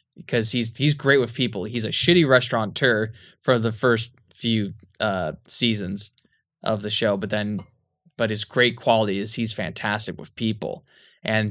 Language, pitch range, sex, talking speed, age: English, 105-125 Hz, male, 160 wpm, 20-39